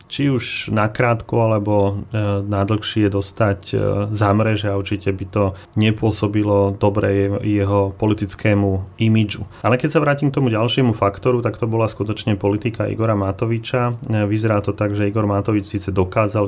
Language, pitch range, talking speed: Slovak, 100-115 Hz, 145 wpm